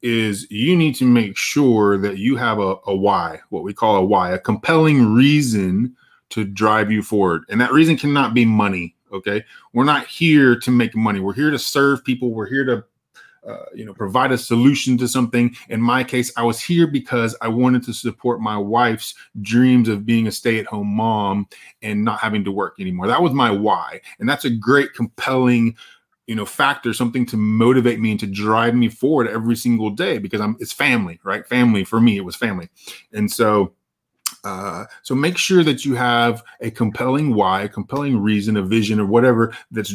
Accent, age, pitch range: American, 20-39, 110-130 Hz